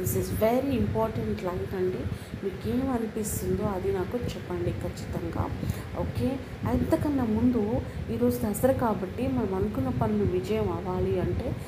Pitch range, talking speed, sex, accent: 145-235 Hz, 130 wpm, female, native